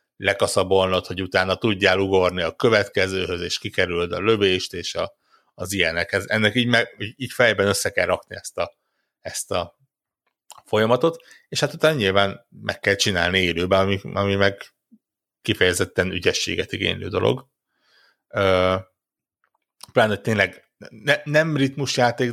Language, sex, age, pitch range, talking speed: Hungarian, male, 60-79, 95-120 Hz, 120 wpm